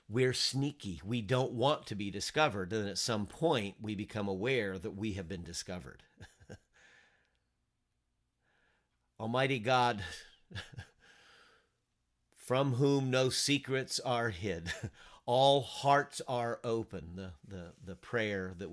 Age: 40-59